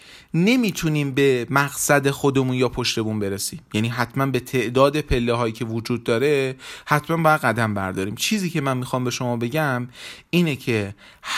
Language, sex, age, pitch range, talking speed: Persian, male, 30-49, 120-160 Hz, 155 wpm